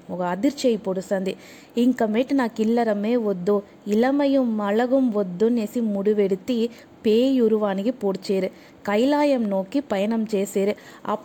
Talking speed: 100 wpm